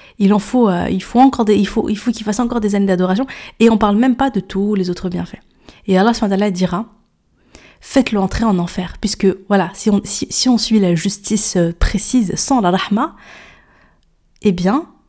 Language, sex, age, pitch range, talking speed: French, female, 20-39, 190-240 Hz, 170 wpm